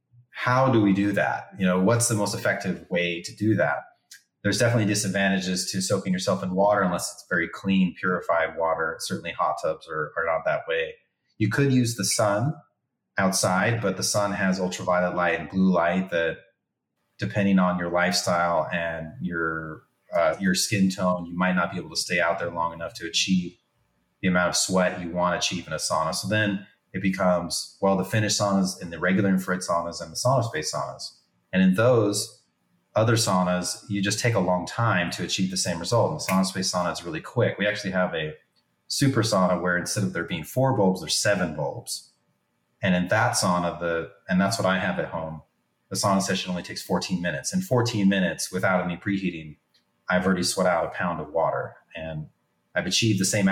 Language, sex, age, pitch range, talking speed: English, male, 30-49, 90-105 Hz, 205 wpm